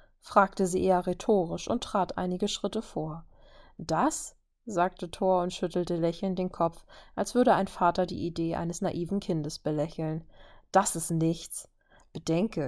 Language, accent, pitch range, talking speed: German, German, 165-200 Hz, 145 wpm